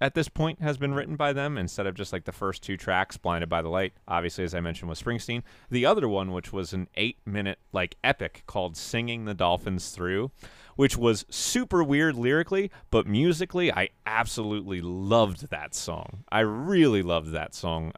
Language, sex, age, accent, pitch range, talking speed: English, male, 30-49, American, 90-120 Hz, 195 wpm